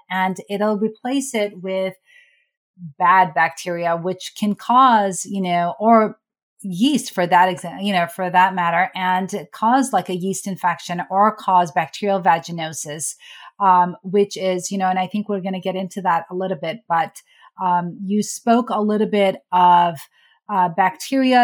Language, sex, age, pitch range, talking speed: English, female, 30-49, 180-220 Hz, 160 wpm